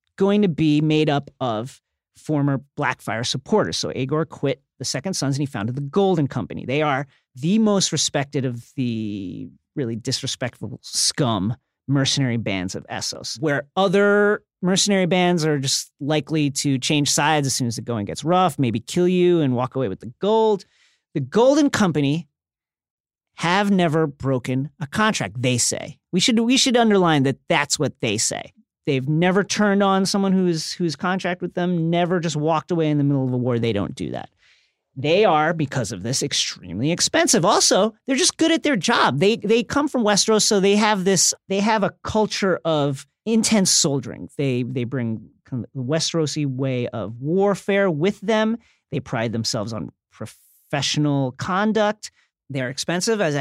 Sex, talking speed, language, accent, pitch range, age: male, 175 wpm, English, American, 130-200 Hz, 40-59